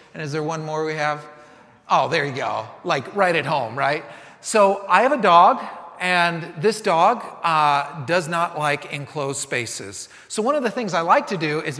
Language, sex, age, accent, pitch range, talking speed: English, male, 30-49, American, 165-240 Hz, 205 wpm